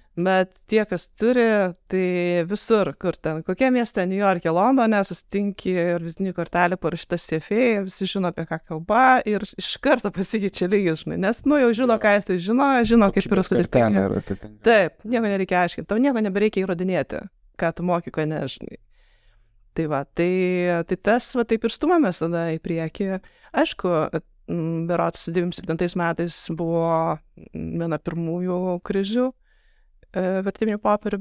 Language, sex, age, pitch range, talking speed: English, female, 20-39, 170-215 Hz, 140 wpm